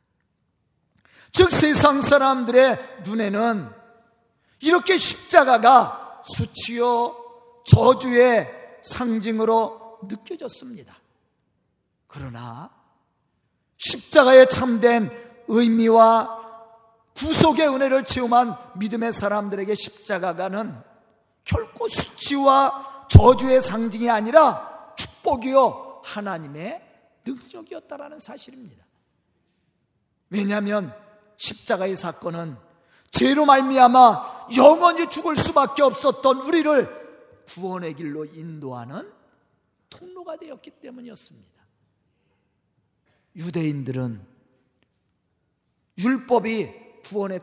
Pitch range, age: 190-265 Hz, 40-59